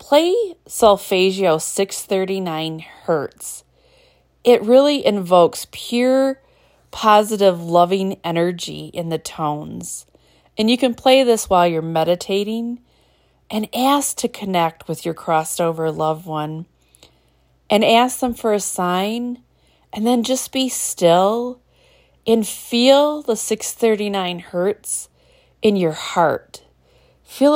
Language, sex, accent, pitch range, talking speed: English, female, American, 165-225 Hz, 110 wpm